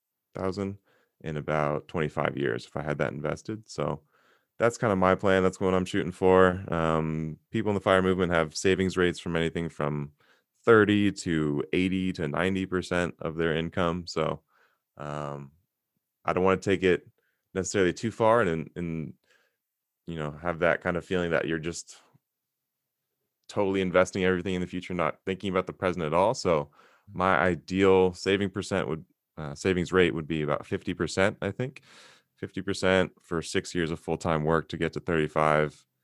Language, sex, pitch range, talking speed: English, male, 75-95 Hz, 175 wpm